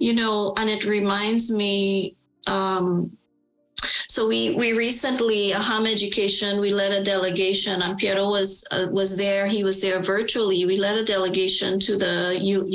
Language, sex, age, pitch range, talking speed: English, female, 30-49, 190-215 Hz, 160 wpm